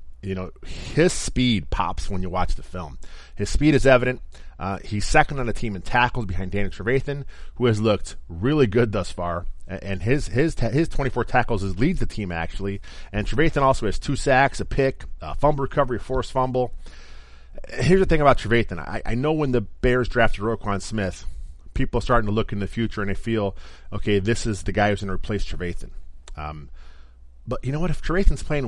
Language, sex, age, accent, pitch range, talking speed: English, male, 30-49, American, 90-125 Hz, 210 wpm